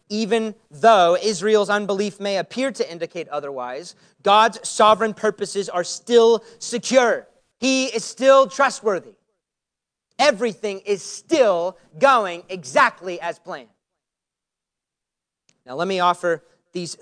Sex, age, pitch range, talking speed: male, 30-49, 175-225 Hz, 110 wpm